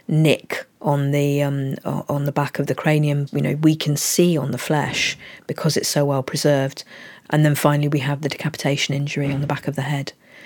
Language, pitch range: English, 145-175 Hz